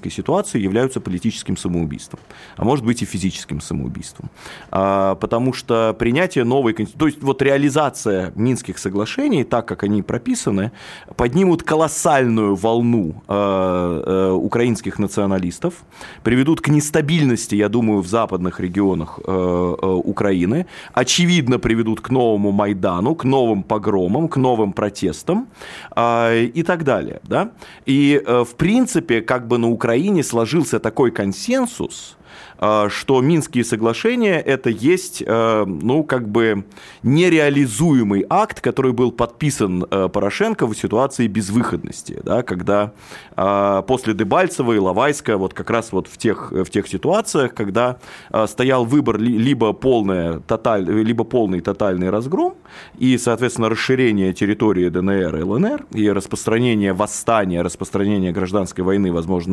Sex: male